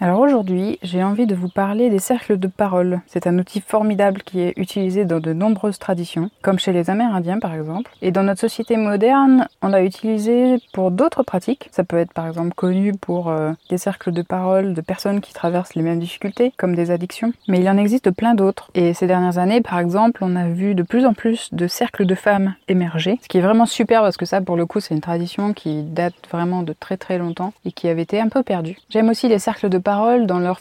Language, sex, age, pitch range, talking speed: French, female, 20-39, 175-215 Hz, 235 wpm